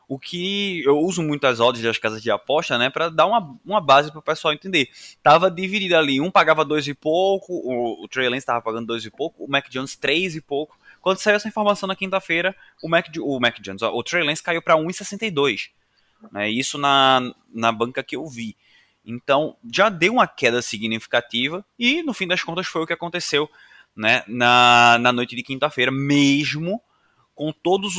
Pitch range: 125-190 Hz